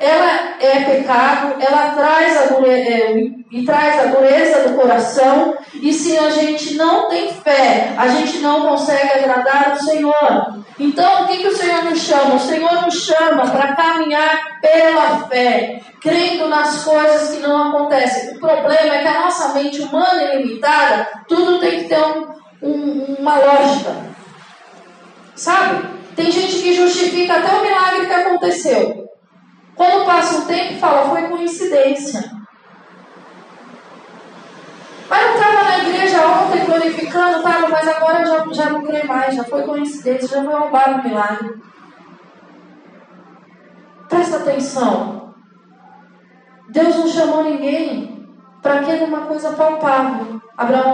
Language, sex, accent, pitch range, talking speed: Portuguese, female, Brazilian, 270-325 Hz, 145 wpm